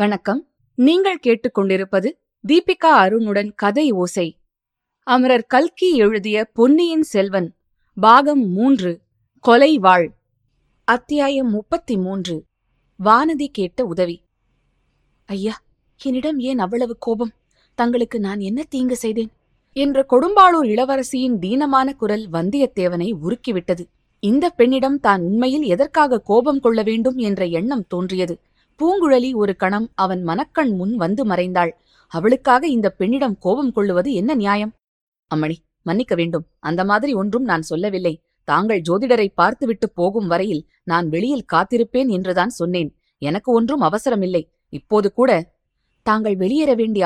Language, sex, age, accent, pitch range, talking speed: Tamil, female, 20-39, native, 185-255 Hz, 115 wpm